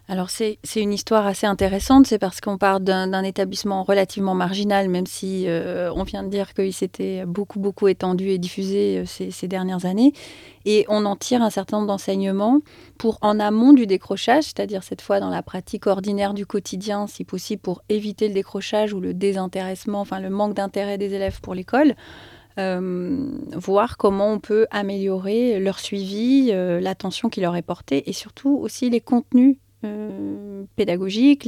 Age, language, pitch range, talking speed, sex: 30-49, French, 190-220 Hz, 180 wpm, female